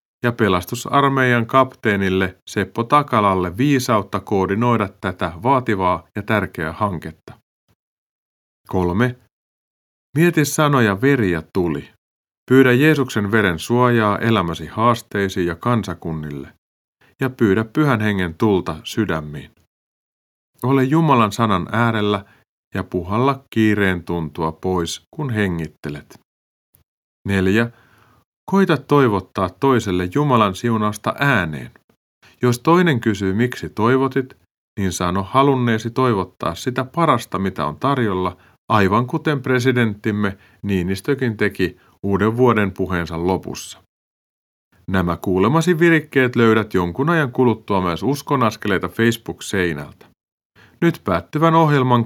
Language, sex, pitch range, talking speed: Finnish, male, 95-130 Hz, 100 wpm